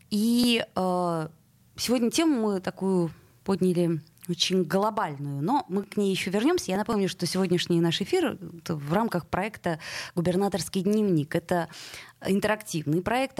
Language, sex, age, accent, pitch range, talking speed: Russian, female, 20-39, native, 155-200 Hz, 130 wpm